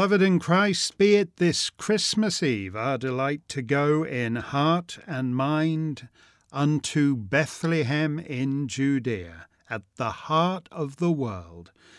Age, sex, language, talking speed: 50-69, male, English, 130 wpm